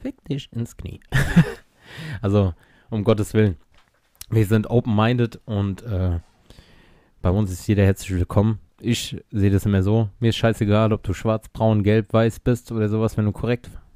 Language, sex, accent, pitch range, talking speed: German, male, German, 100-120 Hz, 170 wpm